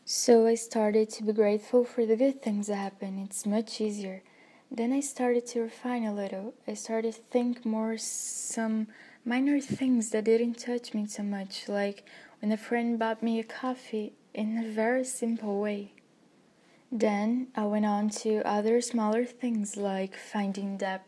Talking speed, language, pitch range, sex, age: 170 wpm, English, 210-240 Hz, female, 20-39